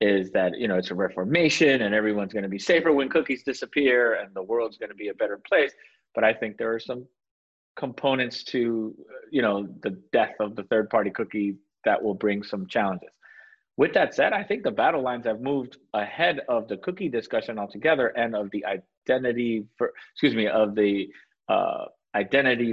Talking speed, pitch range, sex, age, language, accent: 195 wpm, 105-135 Hz, male, 30-49, English, American